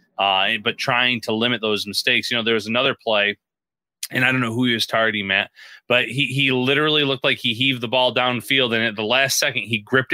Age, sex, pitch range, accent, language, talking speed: 30-49, male, 110-130 Hz, American, English, 235 wpm